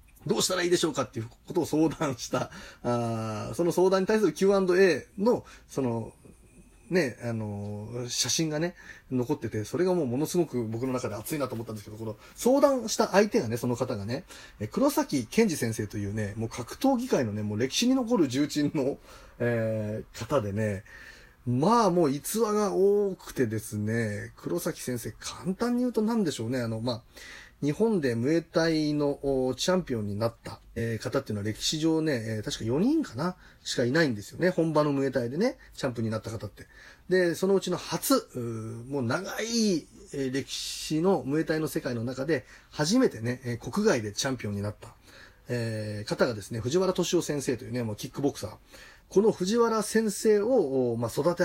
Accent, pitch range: native, 115-175 Hz